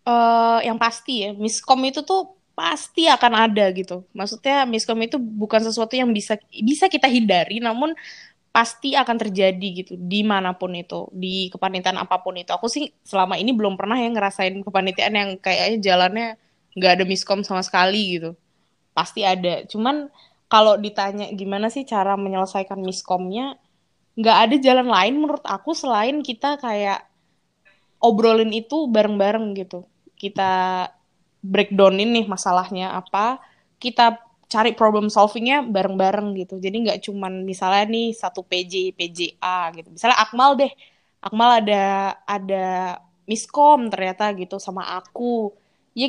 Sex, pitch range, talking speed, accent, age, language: female, 190-240 Hz, 135 wpm, native, 20-39, Indonesian